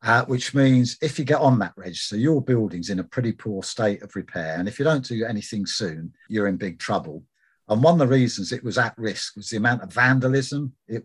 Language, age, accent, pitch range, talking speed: English, 50-69, British, 105-125 Hz, 240 wpm